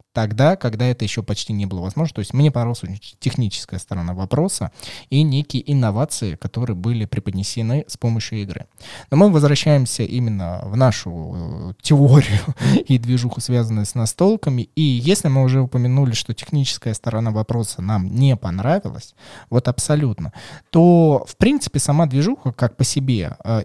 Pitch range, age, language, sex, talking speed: 110-140 Hz, 20-39, Russian, male, 150 wpm